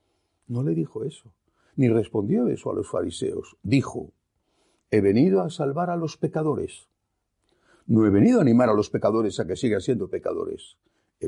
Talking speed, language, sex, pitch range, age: 170 wpm, Spanish, male, 100-155 Hz, 60-79